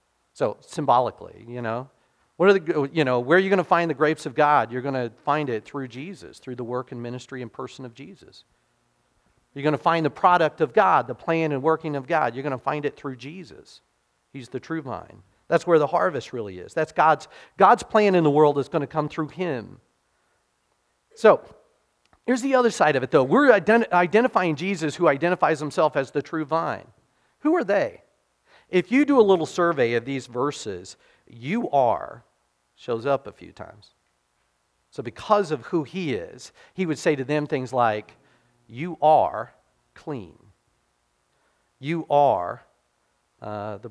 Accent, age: American, 40-59